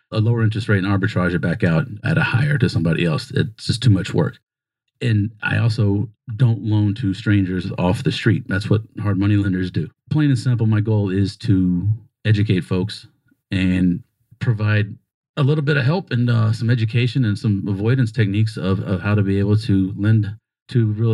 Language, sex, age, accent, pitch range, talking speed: English, male, 40-59, American, 100-120 Hz, 200 wpm